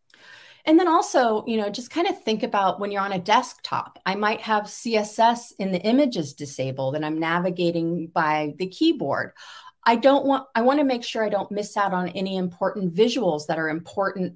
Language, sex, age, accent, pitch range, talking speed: English, female, 40-59, American, 155-205 Hz, 200 wpm